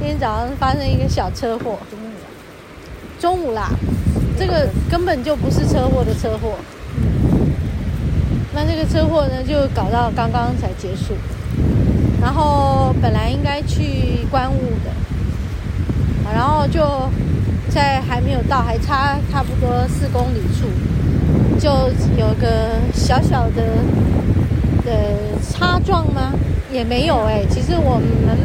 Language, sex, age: Chinese, female, 30-49